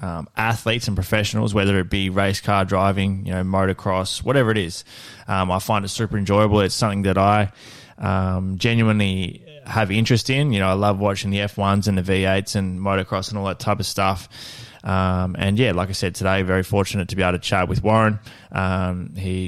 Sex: male